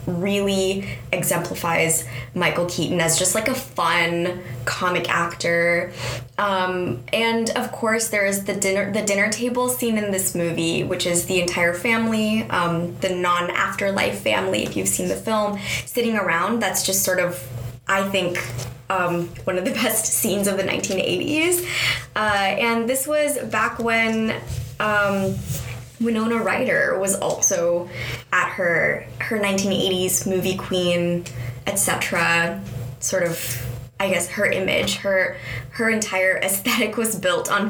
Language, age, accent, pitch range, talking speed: English, 20-39, American, 170-210 Hz, 140 wpm